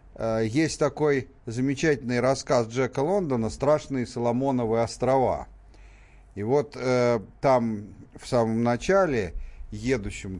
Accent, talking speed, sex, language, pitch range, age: native, 100 wpm, male, Russian, 100-135 Hz, 50-69